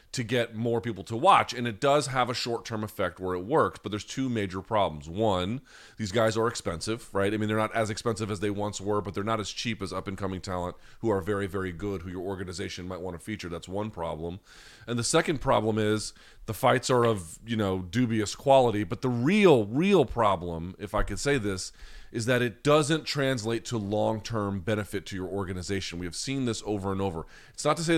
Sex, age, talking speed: male, 30-49, 225 wpm